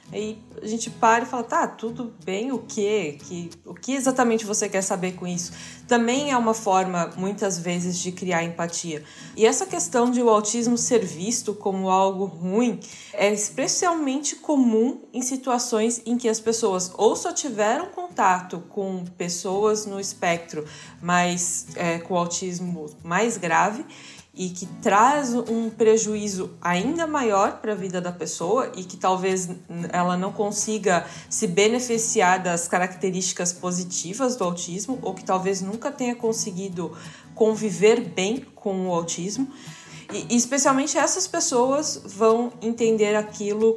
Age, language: 20-39, Portuguese